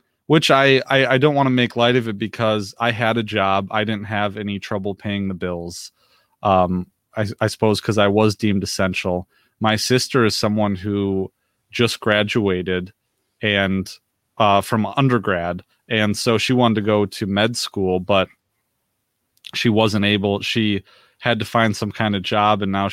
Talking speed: 175 wpm